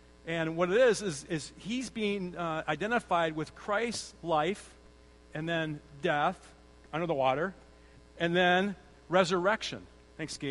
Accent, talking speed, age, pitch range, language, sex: American, 135 wpm, 40-59, 140-195 Hz, English, male